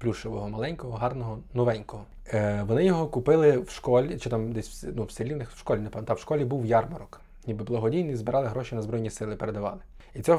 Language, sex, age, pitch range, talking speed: Ukrainian, male, 20-39, 110-140 Hz, 200 wpm